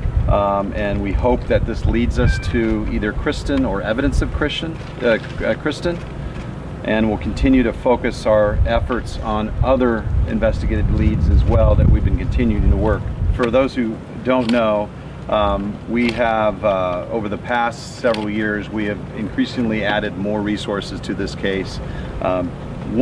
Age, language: 40-59, English